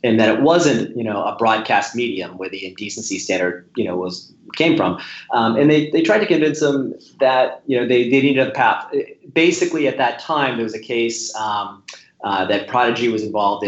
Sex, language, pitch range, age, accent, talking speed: male, English, 105-135 Hz, 30-49, American, 215 wpm